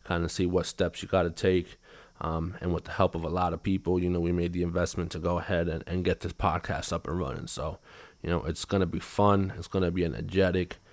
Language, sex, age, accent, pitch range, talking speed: English, male, 20-39, American, 90-105 Hz, 265 wpm